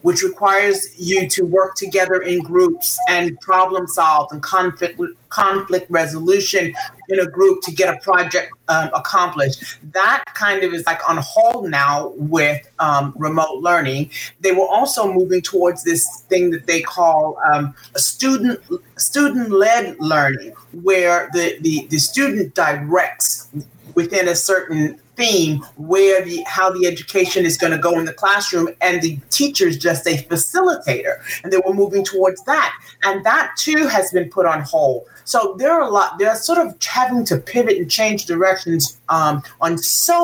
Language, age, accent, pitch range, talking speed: English, 30-49, American, 160-205 Hz, 165 wpm